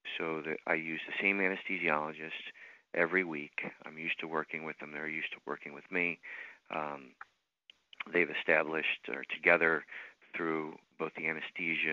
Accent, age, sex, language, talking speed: American, 40-59, male, English, 150 wpm